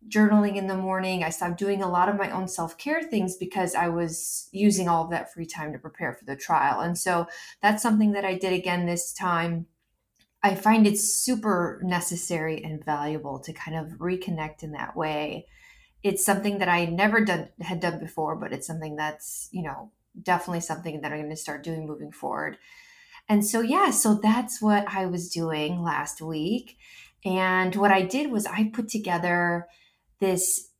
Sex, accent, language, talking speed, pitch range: female, American, English, 190 wpm, 170-205 Hz